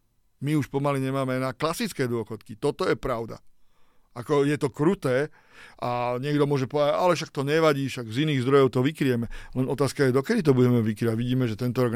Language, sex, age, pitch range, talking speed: Slovak, male, 40-59, 125-145 Hz, 195 wpm